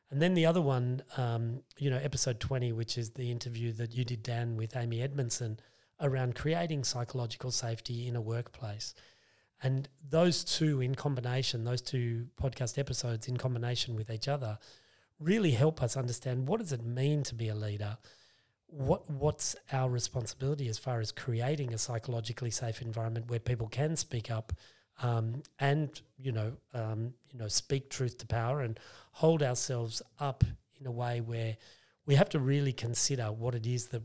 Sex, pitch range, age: male, 115-140 Hz, 30-49